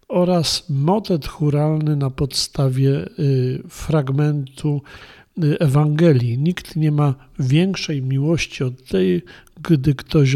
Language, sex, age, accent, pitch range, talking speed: Polish, male, 50-69, native, 135-175 Hz, 95 wpm